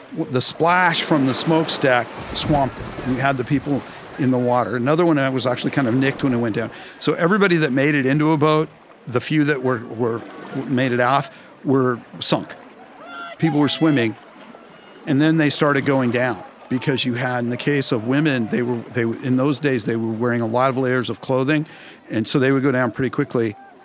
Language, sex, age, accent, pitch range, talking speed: English, male, 50-69, American, 125-150 Hz, 215 wpm